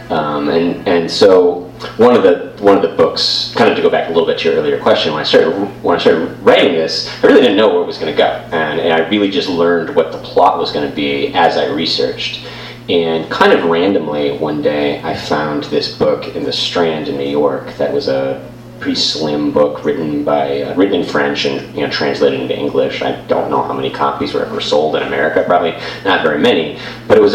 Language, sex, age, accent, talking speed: English, male, 30-49, American, 240 wpm